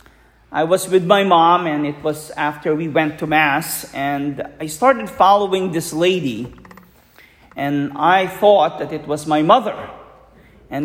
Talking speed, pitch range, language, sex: 155 wpm, 150-200 Hz, English, male